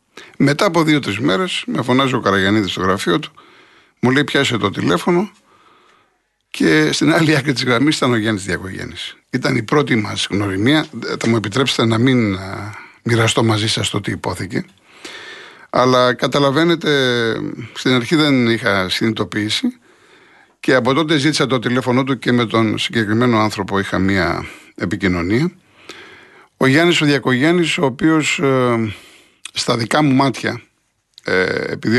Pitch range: 110-145 Hz